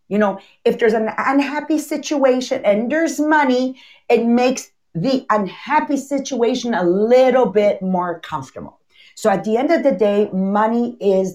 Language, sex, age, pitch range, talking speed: English, female, 50-69, 185-245 Hz, 155 wpm